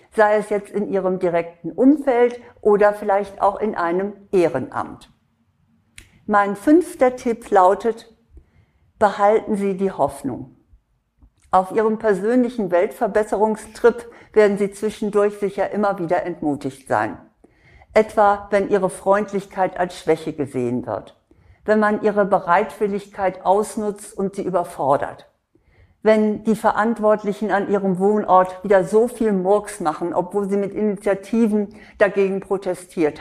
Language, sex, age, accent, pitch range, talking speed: German, female, 60-79, German, 185-220 Hz, 120 wpm